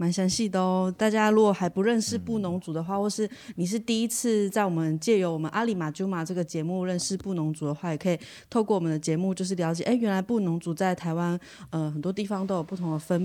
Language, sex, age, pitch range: Chinese, female, 20-39, 165-200 Hz